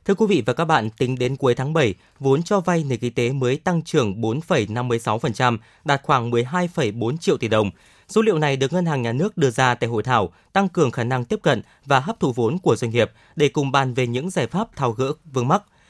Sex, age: male, 20-39